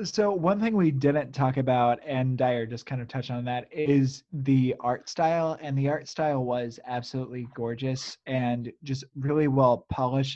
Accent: American